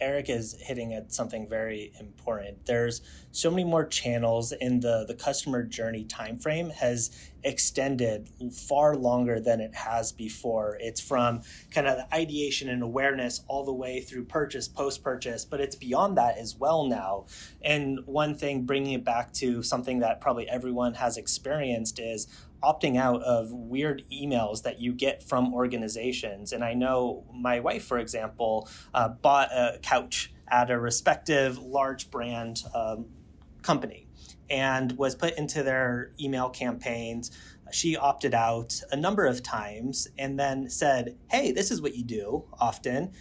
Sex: male